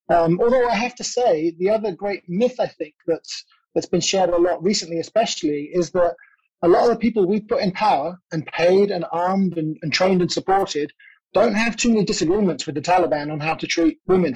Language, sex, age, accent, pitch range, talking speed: English, male, 30-49, British, 160-185 Hz, 220 wpm